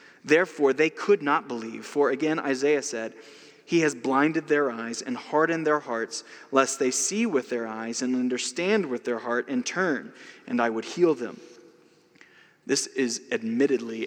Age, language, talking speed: 20-39, English, 165 wpm